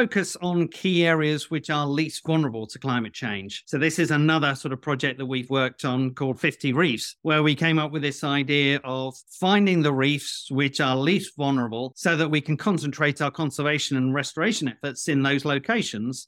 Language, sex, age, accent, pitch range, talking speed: English, male, 40-59, British, 130-160 Hz, 195 wpm